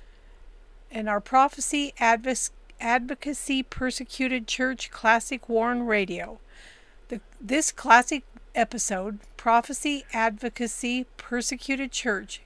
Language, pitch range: English, 215-260 Hz